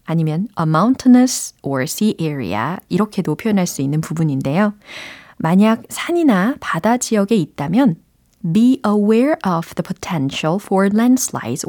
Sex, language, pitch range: female, Korean, 165-230 Hz